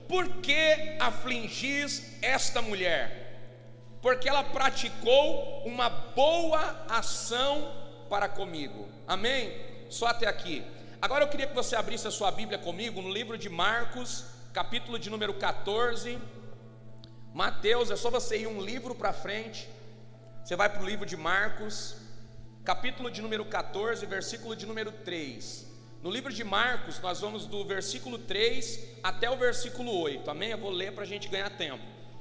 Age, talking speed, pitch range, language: 40-59, 150 wpm, 180-270 Hz, Portuguese